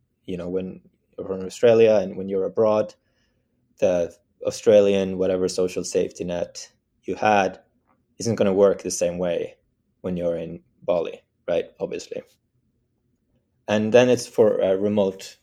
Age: 20-39